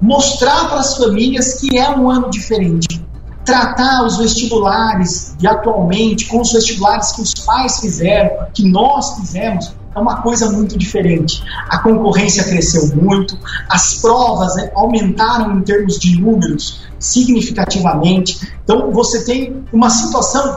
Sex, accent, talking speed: male, Brazilian, 135 wpm